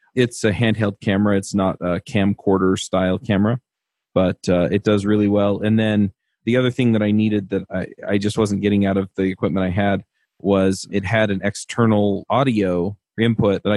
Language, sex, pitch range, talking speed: English, male, 95-105 Hz, 190 wpm